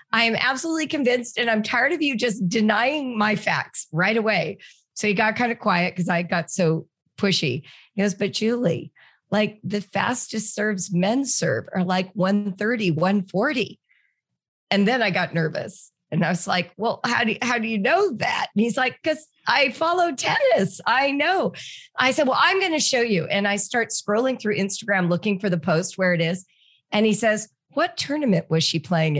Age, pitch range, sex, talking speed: 40-59, 180-250 Hz, female, 195 wpm